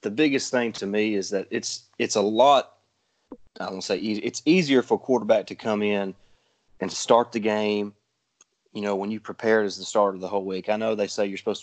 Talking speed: 225 wpm